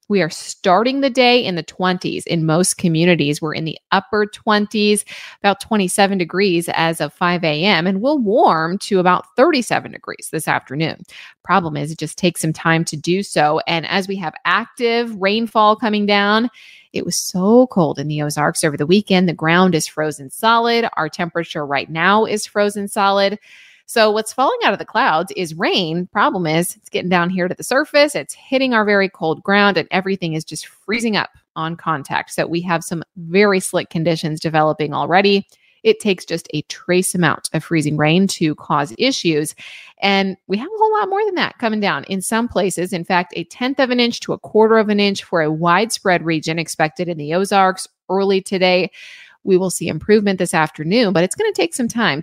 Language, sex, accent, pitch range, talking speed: English, female, American, 165-210 Hz, 200 wpm